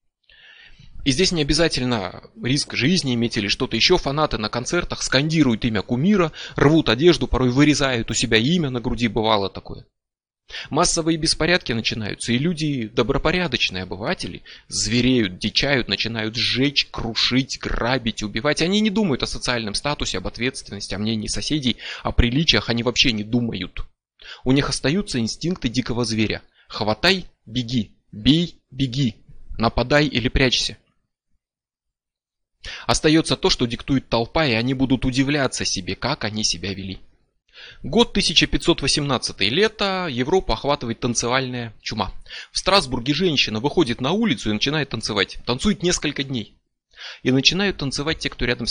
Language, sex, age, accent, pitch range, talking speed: Russian, male, 20-39, native, 115-150 Hz, 135 wpm